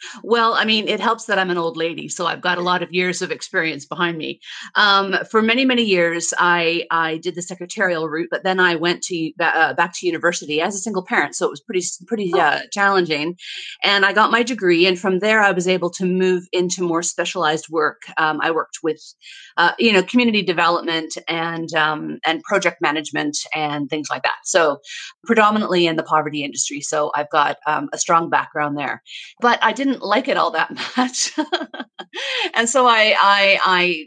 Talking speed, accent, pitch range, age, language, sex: 200 wpm, American, 165-200 Hz, 30-49, English, female